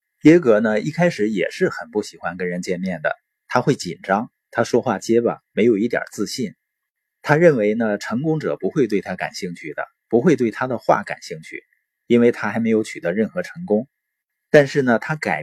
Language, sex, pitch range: Chinese, male, 105-145 Hz